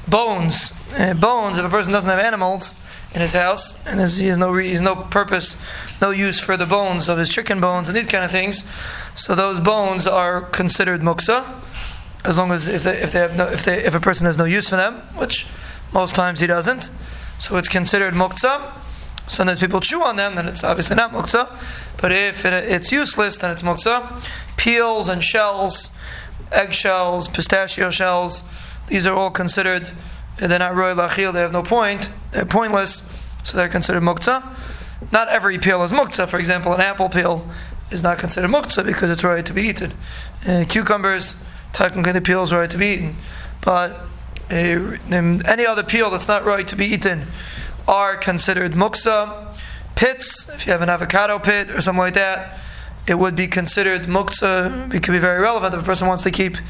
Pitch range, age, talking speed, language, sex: 175-200 Hz, 20-39, 190 wpm, English, male